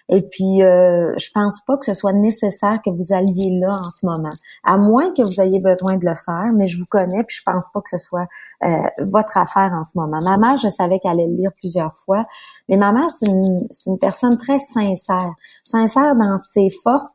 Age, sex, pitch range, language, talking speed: 30-49, female, 185-215 Hz, French, 230 wpm